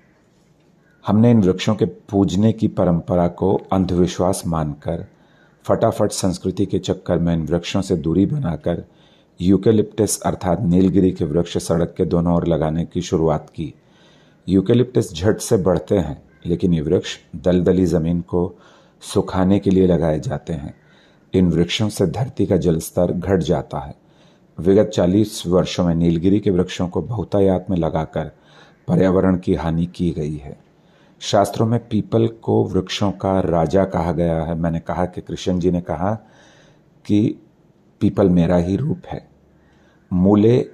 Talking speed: 145 wpm